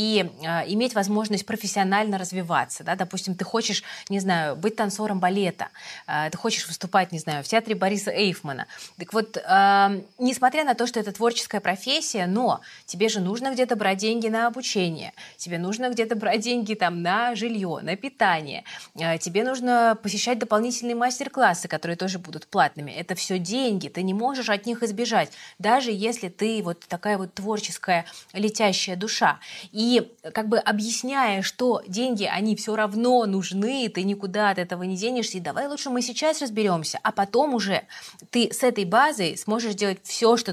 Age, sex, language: 20-39, female, Russian